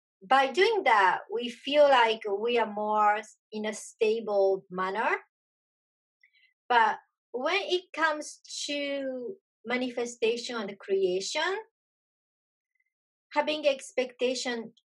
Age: 30-49